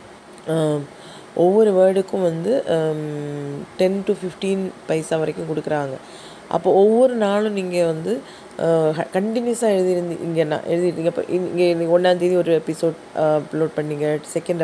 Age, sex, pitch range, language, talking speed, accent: 20-39, female, 160-195 Hz, Tamil, 110 wpm, native